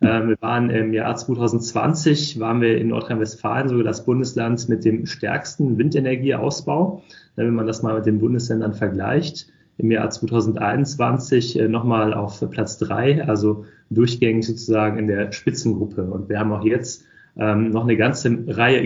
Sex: male